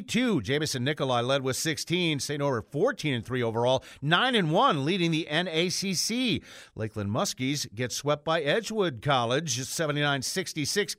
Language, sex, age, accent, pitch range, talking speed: English, male, 50-69, American, 135-190 Hz, 120 wpm